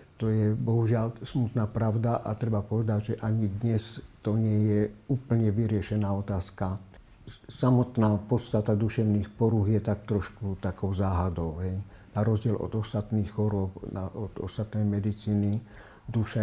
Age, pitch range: 60-79, 105-115 Hz